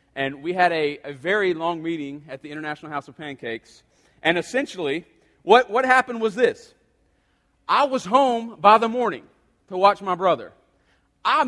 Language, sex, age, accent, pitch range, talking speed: English, male, 40-59, American, 190-255 Hz, 165 wpm